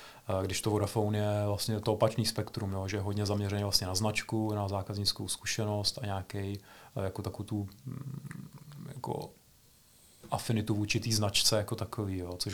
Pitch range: 100-110 Hz